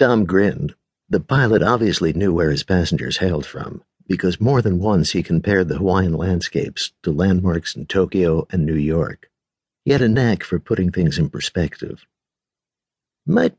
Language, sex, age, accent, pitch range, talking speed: English, male, 60-79, American, 90-135 Hz, 165 wpm